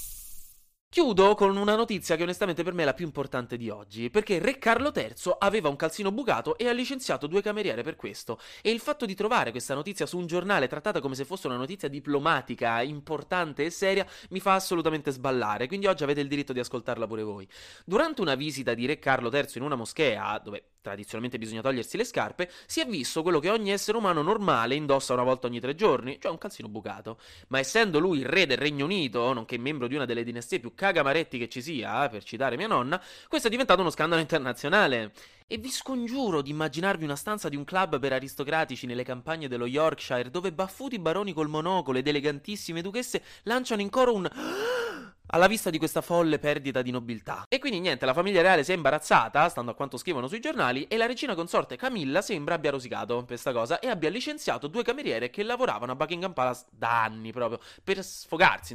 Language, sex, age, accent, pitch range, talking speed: Italian, male, 20-39, native, 125-200 Hz, 205 wpm